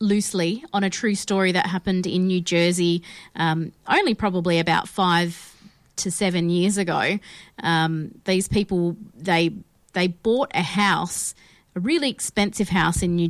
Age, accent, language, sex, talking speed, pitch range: 30-49, Australian, English, female, 150 wpm, 170-195 Hz